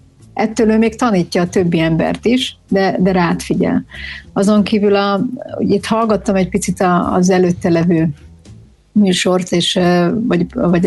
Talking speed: 145 wpm